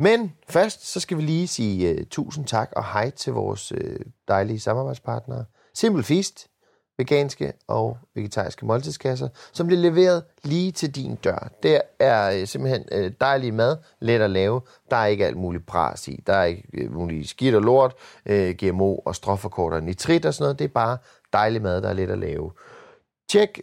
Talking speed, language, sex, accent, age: 185 wpm, English, male, Danish, 30-49